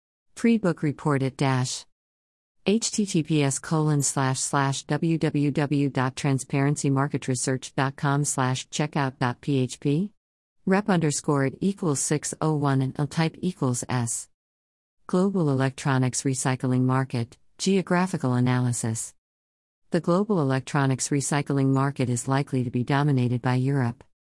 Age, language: 50-69, English